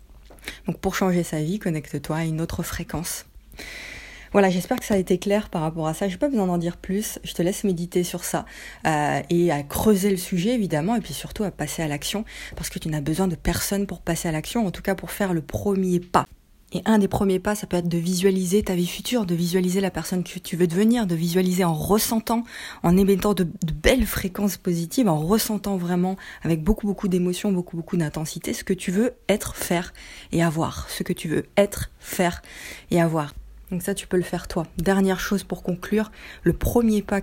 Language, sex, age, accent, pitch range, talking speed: French, female, 20-39, French, 170-200 Hz, 225 wpm